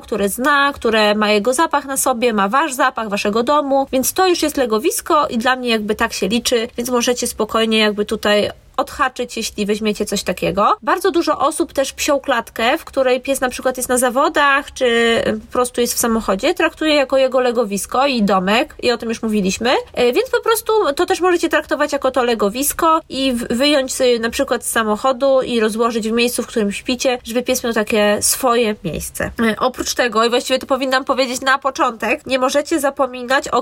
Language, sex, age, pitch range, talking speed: Polish, female, 20-39, 225-280 Hz, 195 wpm